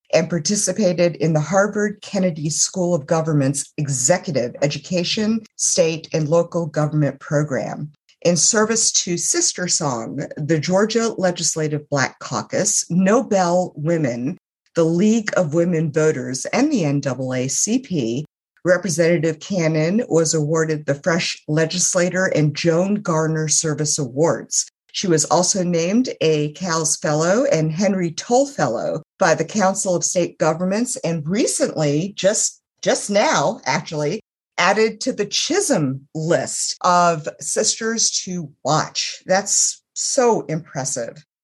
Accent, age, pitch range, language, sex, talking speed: American, 50-69, 150-190 Hz, English, female, 120 wpm